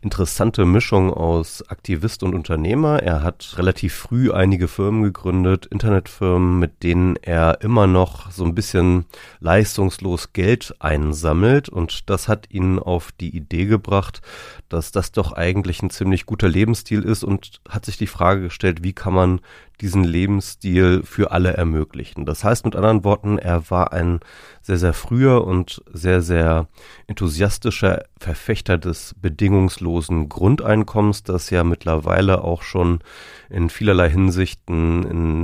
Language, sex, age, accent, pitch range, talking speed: German, male, 30-49, German, 85-105 Hz, 140 wpm